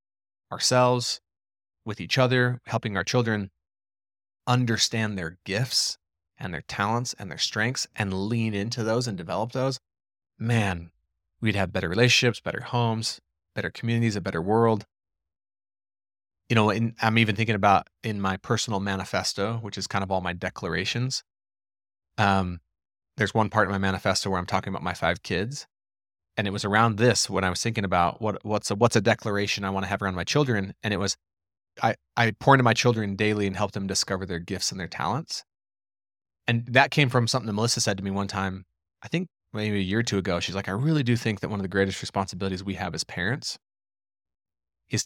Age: 30-49